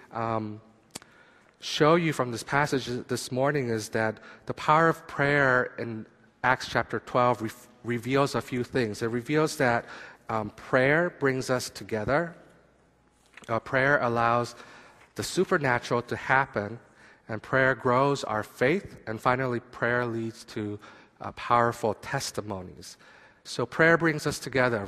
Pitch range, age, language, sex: 115-135 Hz, 40-59, Korean, male